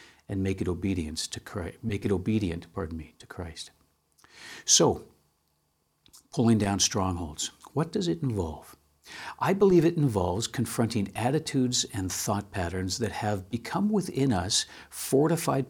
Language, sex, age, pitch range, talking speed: English, male, 60-79, 100-130 Hz, 140 wpm